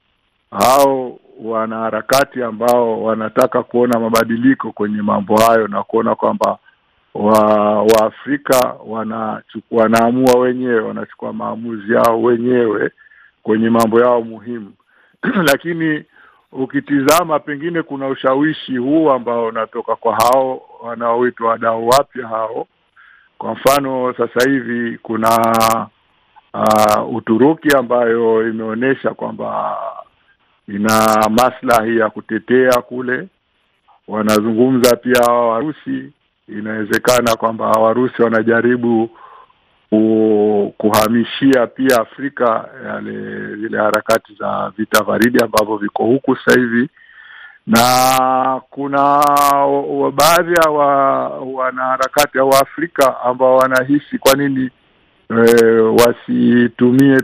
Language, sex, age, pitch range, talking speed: Swahili, male, 60-79, 110-130 Hz, 95 wpm